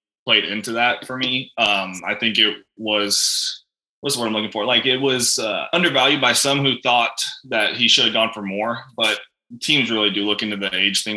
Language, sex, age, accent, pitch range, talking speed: English, male, 20-39, American, 105-125 Hz, 215 wpm